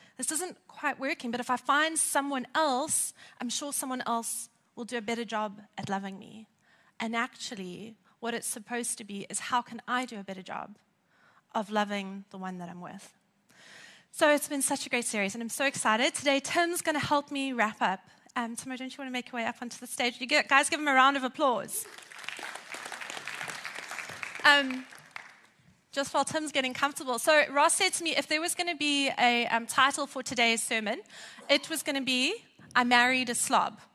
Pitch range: 225-285 Hz